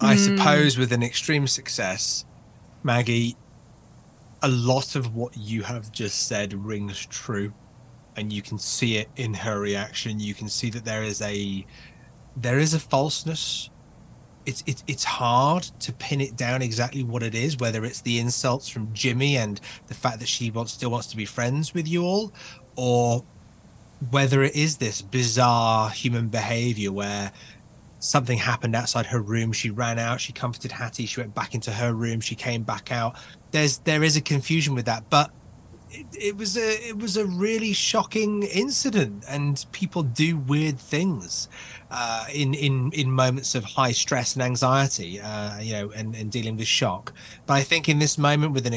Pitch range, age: 115-140 Hz, 30-49